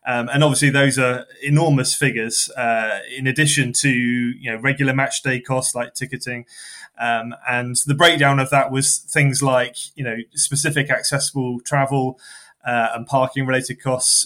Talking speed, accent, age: 160 wpm, British, 20-39